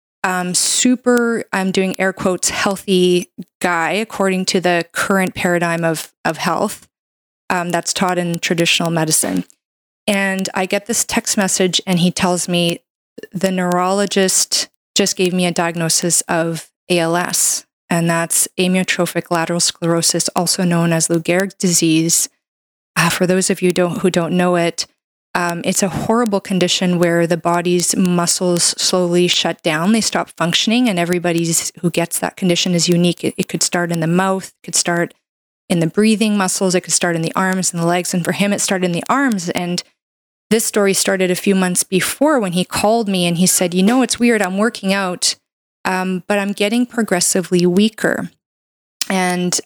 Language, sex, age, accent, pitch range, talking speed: English, female, 20-39, American, 170-195 Hz, 175 wpm